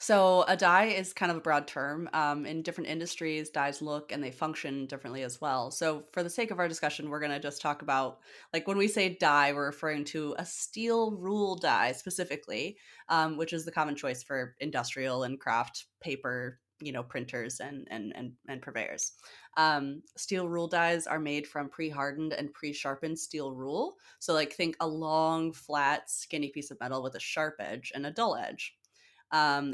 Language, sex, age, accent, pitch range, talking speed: English, female, 20-39, American, 145-180 Hz, 195 wpm